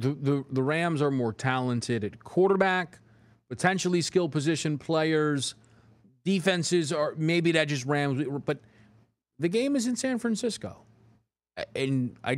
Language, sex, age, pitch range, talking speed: English, male, 30-49, 115-170 Hz, 135 wpm